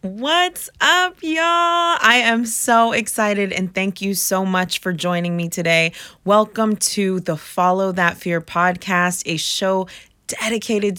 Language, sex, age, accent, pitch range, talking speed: English, female, 20-39, American, 165-200 Hz, 140 wpm